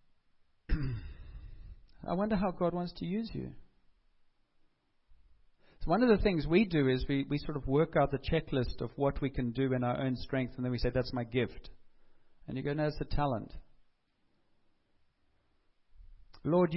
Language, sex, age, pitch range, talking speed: English, male, 50-69, 120-145 Hz, 170 wpm